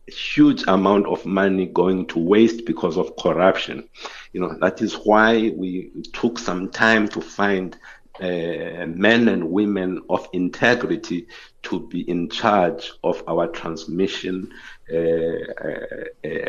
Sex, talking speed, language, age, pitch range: male, 130 wpm, English, 60-79, 90-115 Hz